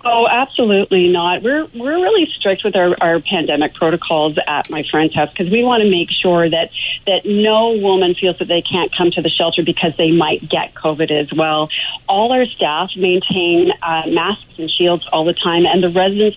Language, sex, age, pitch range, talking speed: English, female, 40-59, 165-200 Hz, 200 wpm